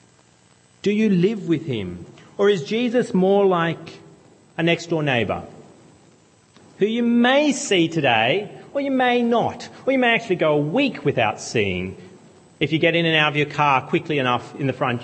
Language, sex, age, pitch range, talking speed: English, male, 40-59, 135-185 Hz, 180 wpm